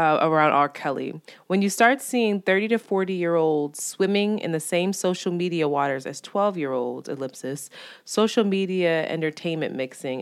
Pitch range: 145-190 Hz